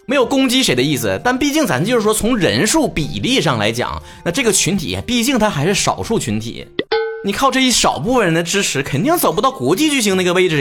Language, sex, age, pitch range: Chinese, male, 30-49, 165-245 Hz